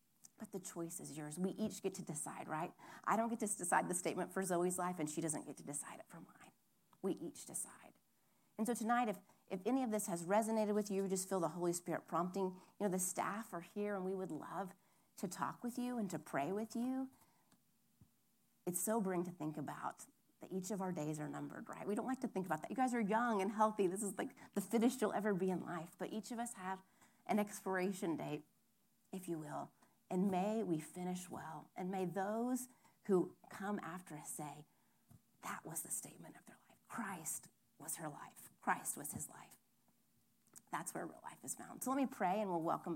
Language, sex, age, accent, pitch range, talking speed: English, female, 30-49, American, 175-210 Hz, 220 wpm